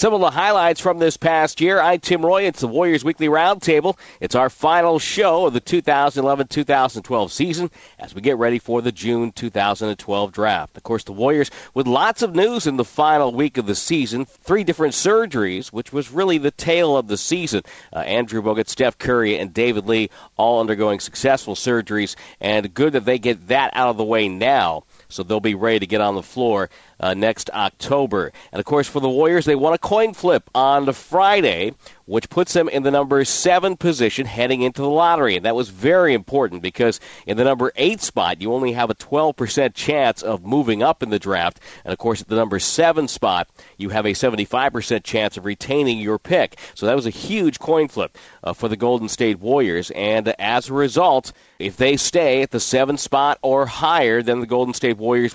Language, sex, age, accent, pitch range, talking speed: English, male, 50-69, American, 110-150 Hz, 205 wpm